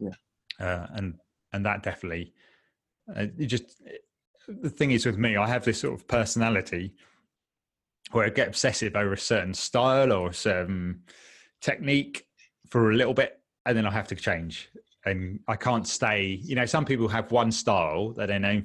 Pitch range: 95-120 Hz